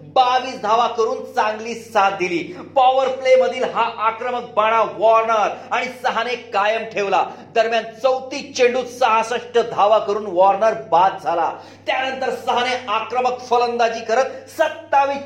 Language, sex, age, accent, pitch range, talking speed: Marathi, male, 40-59, native, 215-255 Hz, 125 wpm